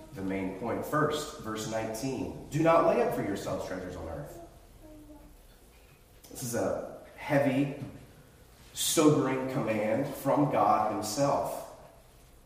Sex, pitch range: male, 100-150 Hz